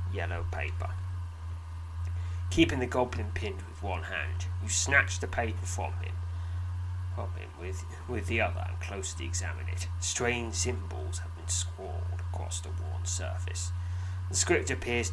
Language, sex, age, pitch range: English, male, 30-49, 85-90 Hz